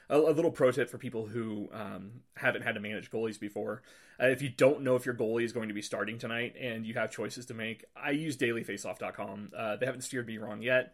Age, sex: 30-49, male